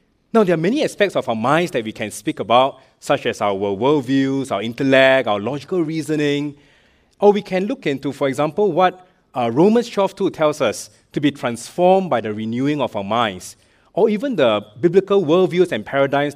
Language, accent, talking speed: English, Malaysian, 185 wpm